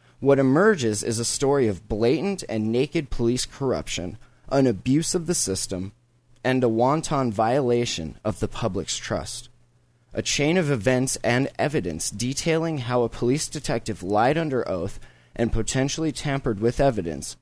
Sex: male